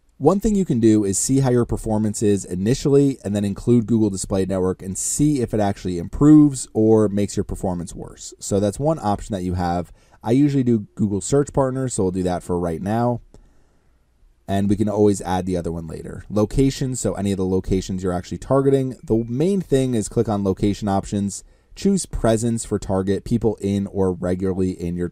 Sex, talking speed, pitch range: male, 205 wpm, 90-120 Hz